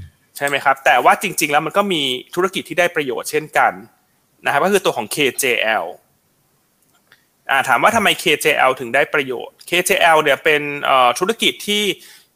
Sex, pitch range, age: male, 145-205 Hz, 20-39